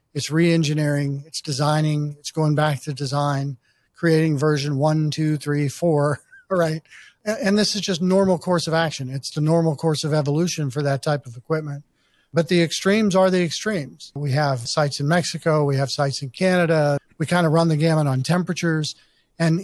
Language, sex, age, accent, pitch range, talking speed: English, male, 50-69, American, 145-170 Hz, 185 wpm